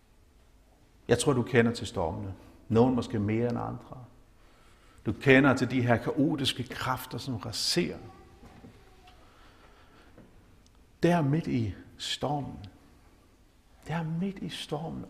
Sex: male